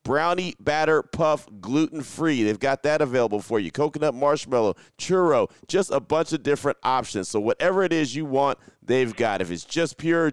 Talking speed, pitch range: 180 wpm, 125-155 Hz